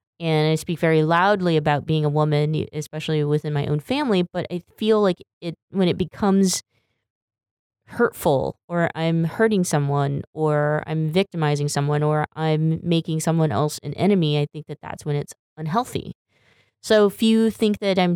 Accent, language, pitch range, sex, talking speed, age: American, English, 145-170 Hz, female, 170 wpm, 20-39